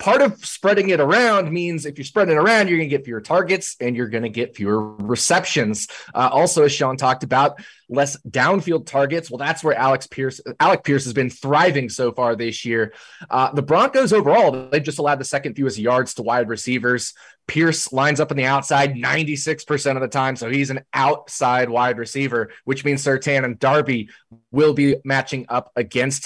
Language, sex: English, male